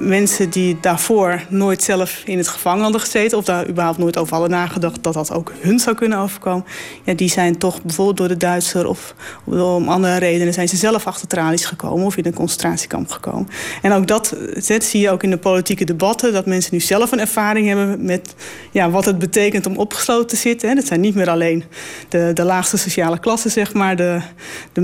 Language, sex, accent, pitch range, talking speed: Dutch, female, Dutch, 175-200 Hz, 215 wpm